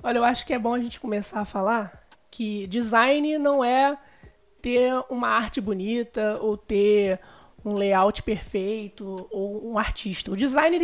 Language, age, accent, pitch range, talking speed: Portuguese, 20-39, Brazilian, 220-290 Hz, 160 wpm